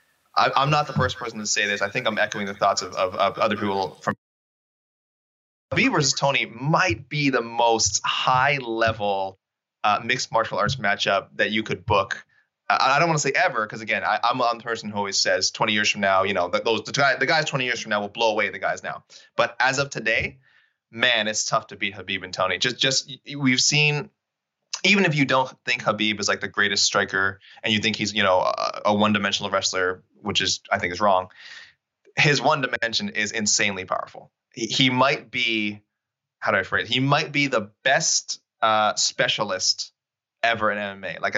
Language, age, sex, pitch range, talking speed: English, 20-39, male, 100-125 Hz, 210 wpm